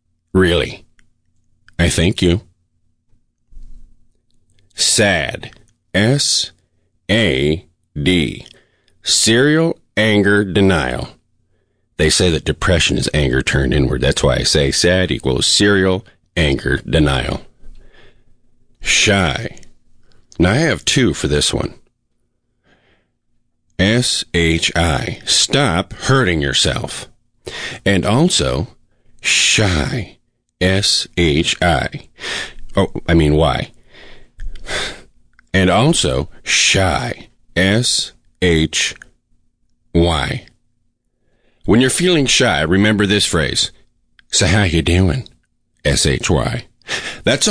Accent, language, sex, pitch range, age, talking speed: American, English, male, 80-110 Hz, 40-59, 80 wpm